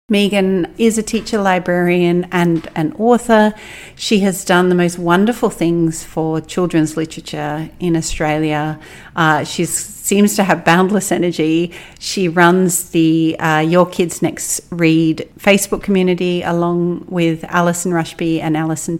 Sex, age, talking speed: female, 40-59, 135 wpm